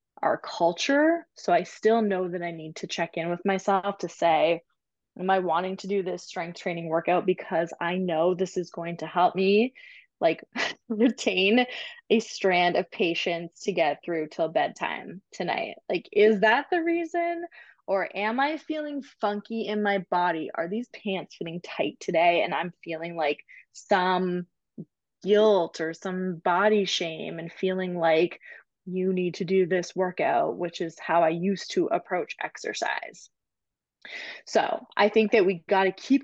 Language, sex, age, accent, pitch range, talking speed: English, female, 20-39, American, 175-225 Hz, 165 wpm